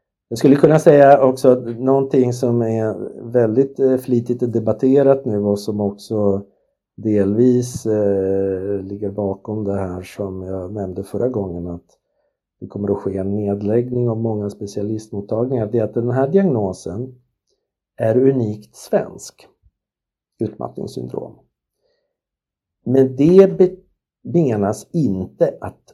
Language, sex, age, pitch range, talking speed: Swedish, male, 60-79, 95-125 Hz, 120 wpm